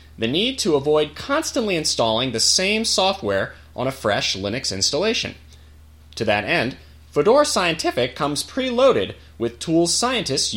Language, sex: English, male